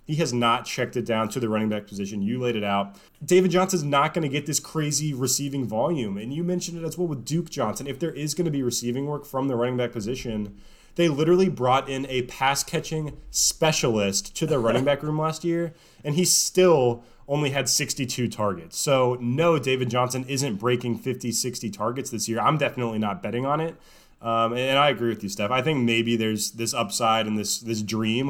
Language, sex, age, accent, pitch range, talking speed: English, male, 20-39, American, 110-140 Hz, 215 wpm